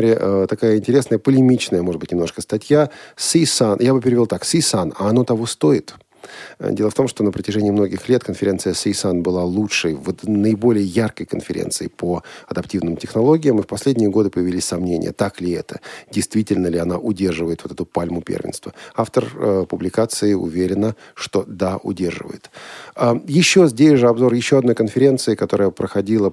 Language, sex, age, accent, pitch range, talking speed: Russian, male, 40-59, native, 90-125 Hz, 160 wpm